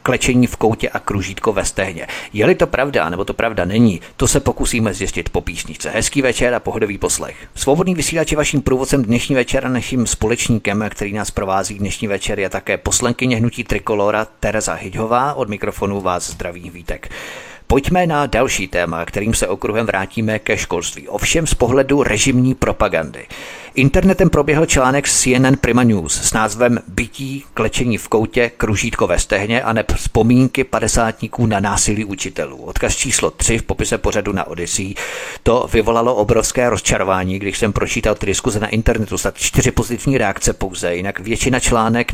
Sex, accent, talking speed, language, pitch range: male, native, 160 wpm, Czech, 100-125 Hz